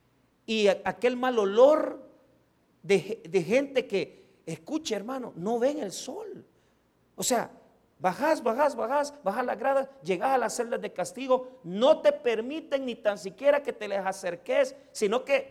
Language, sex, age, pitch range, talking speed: Spanish, male, 50-69, 235-320 Hz, 155 wpm